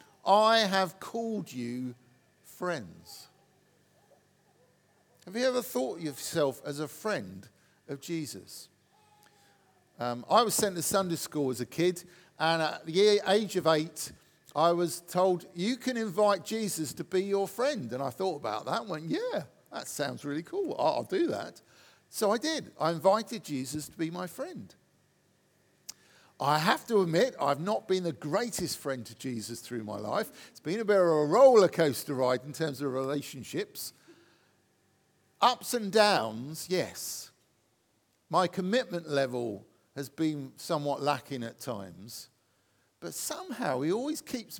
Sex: male